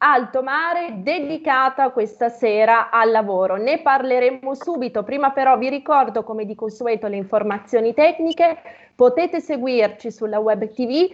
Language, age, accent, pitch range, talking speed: Italian, 30-49, native, 215-275 Hz, 135 wpm